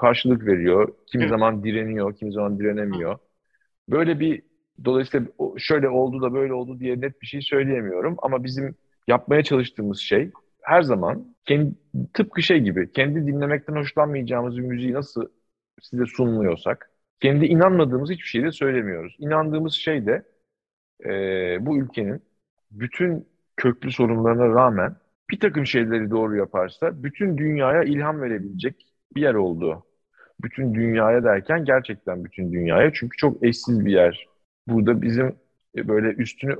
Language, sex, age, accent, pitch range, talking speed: Turkish, male, 40-59, native, 110-135 Hz, 135 wpm